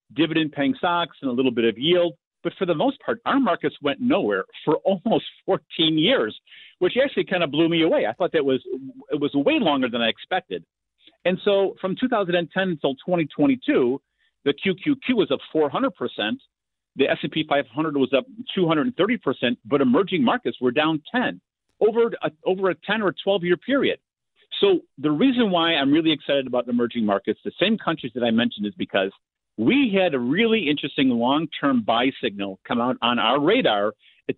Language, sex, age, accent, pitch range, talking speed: English, male, 50-69, American, 135-230 Hz, 180 wpm